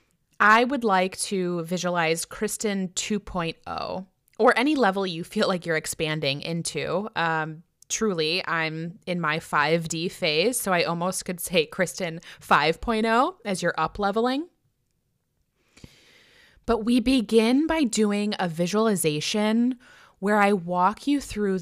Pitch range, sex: 170-220 Hz, female